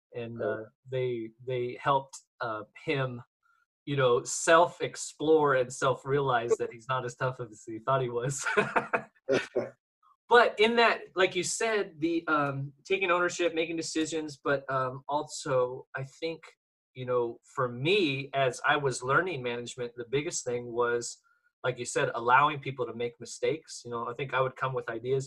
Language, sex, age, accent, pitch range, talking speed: English, male, 20-39, American, 125-170 Hz, 170 wpm